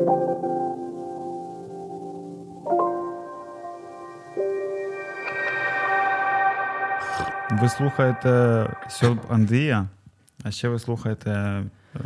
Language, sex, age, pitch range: Ukrainian, male, 20-39, 100-120 Hz